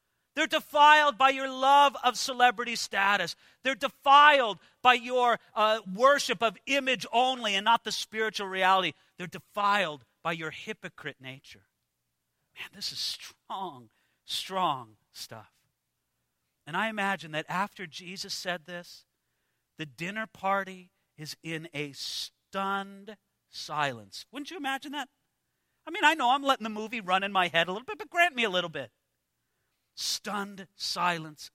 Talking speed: 145 wpm